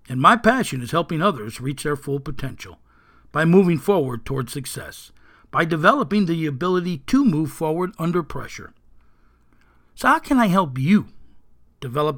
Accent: American